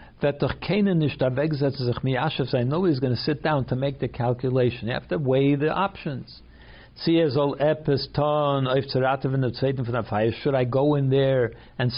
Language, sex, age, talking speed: English, male, 60-79, 115 wpm